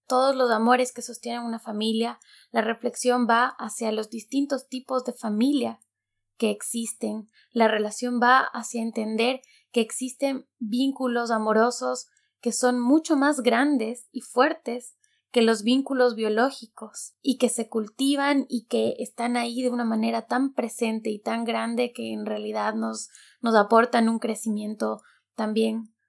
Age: 20-39